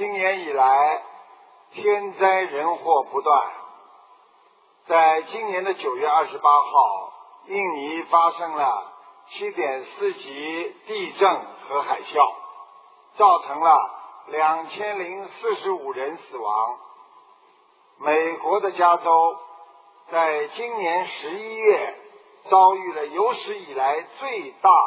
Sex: male